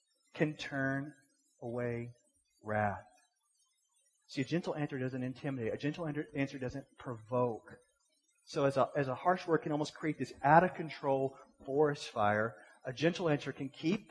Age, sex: 30-49, male